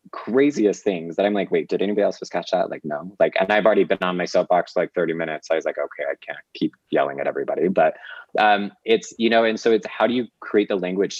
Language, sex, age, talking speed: English, male, 20-39, 265 wpm